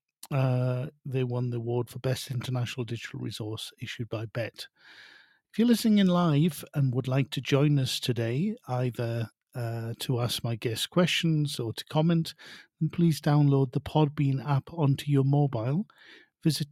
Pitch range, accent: 125-155 Hz, British